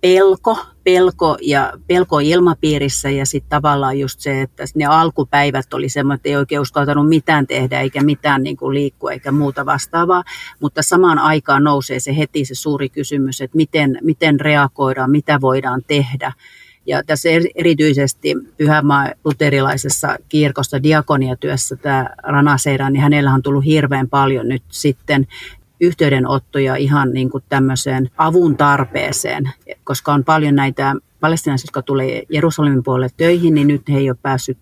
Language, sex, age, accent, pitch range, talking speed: Finnish, female, 40-59, native, 135-155 Hz, 140 wpm